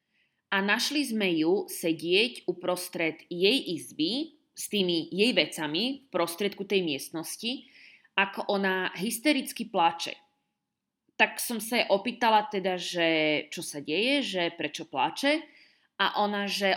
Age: 30-49